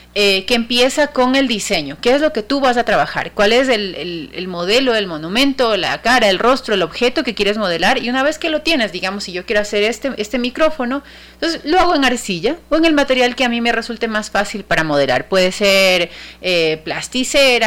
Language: Spanish